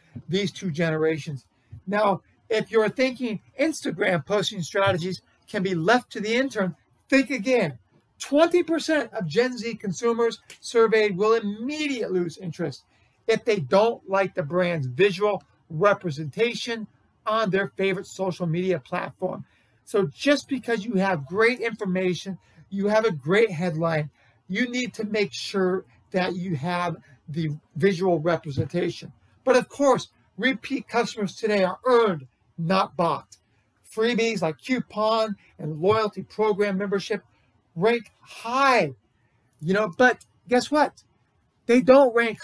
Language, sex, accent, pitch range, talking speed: English, male, American, 170-230 Hz, 130 wpm